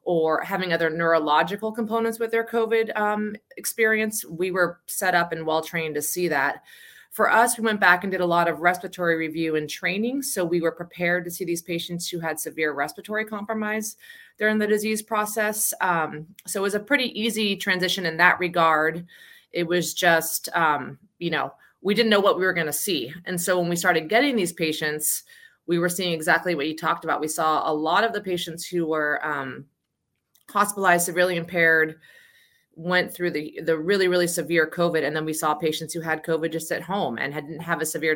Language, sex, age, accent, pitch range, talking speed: English, female, 30-49, American, 155-195 Hz, 200 wpm